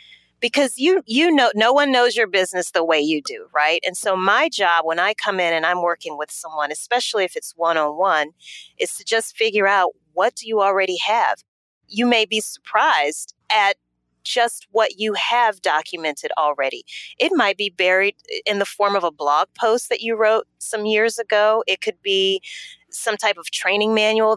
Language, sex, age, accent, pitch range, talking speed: English, female, 30-49, American, 170-235 Hz, 190 wpm